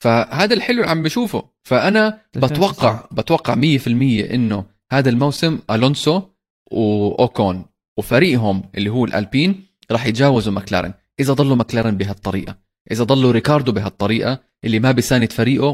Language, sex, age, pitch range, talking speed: Arabic, male, 20-39, 105-140 Hz, 125 wpm